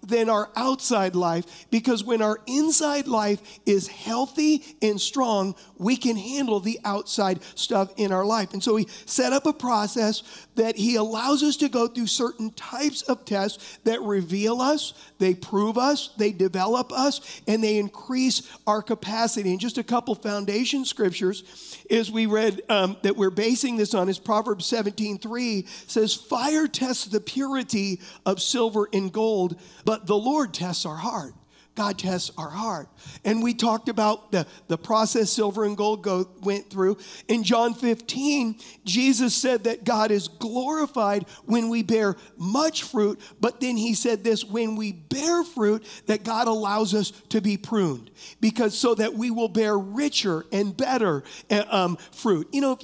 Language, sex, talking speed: English, male, 170 wpm